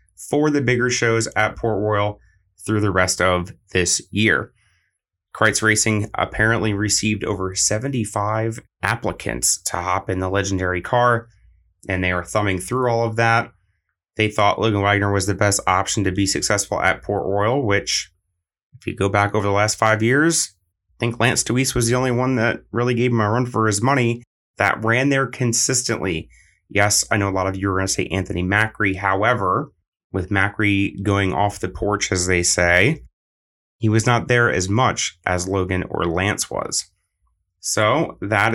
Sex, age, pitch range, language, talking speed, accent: male, 30-49, 95-115 Hz, English, 180 wpm, American